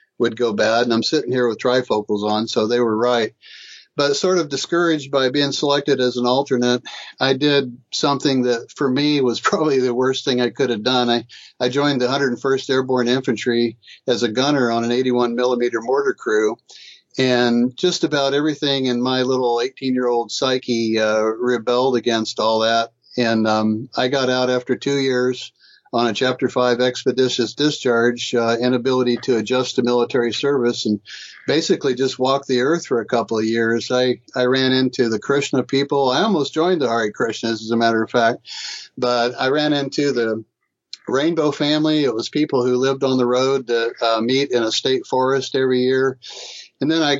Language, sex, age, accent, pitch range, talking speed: English, male, 60-79, American, 120-135 Hz, 190 wpm